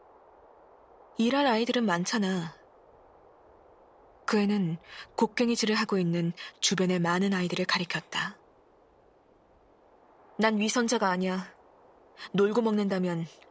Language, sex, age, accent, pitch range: Korean, female, 20-39, native, 185-280 Hz